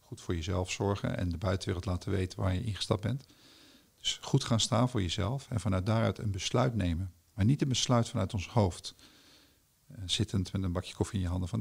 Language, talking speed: Dutch, 210 wpm